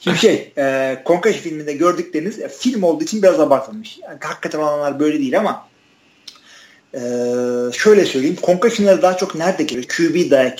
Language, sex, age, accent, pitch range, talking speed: Turkish, male, 40-59, native, 135-185 Hz, 155 wpm